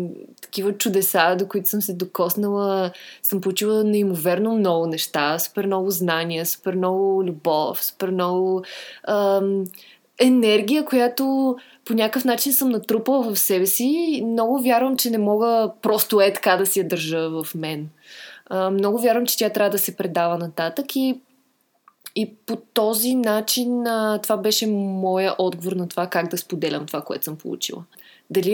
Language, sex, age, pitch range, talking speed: Bulgarian, female, 20-39, 190-245 Hz, 160 wpm